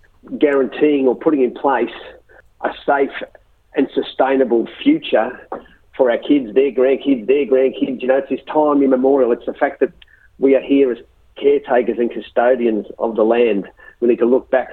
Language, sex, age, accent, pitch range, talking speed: English, male, 40-59, Australian, 115-145 Hz, 170 wpm